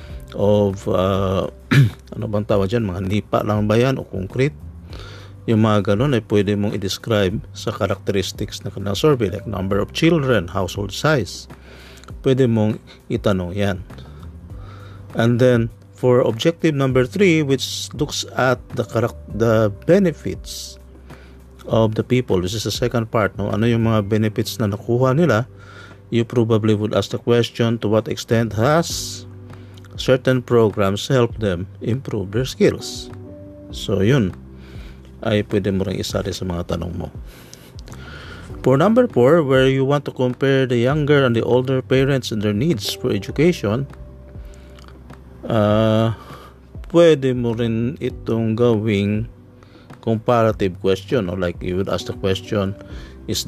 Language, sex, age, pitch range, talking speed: Filipino, male, 50-69, 95-120 Hz, 135 wpm